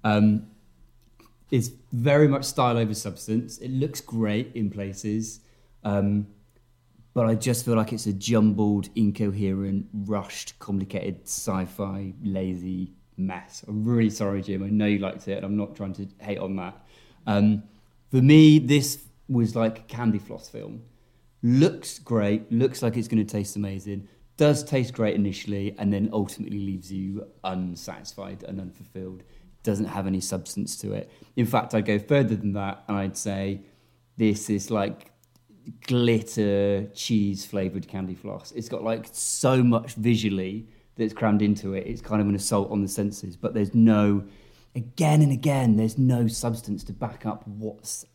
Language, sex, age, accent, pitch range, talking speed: English, male, 30-49, British, 100-115 Hz, 160 wpm